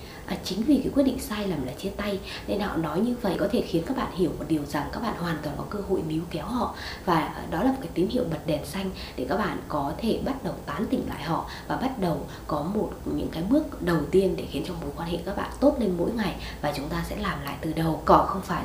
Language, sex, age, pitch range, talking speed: Vietnamese, female, 20-39, 165-215 Hz, 285 wpm